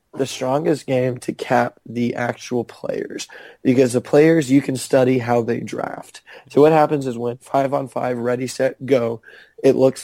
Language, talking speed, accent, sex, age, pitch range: English, 180 wpm, American, male, 20-39, 120-130 Hz